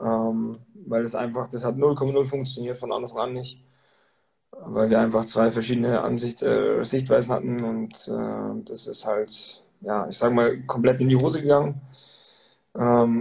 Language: German